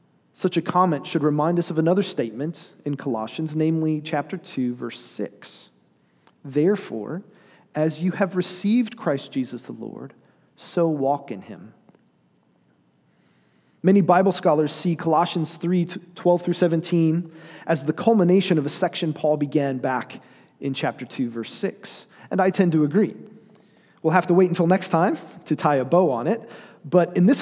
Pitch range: 145-190 Hz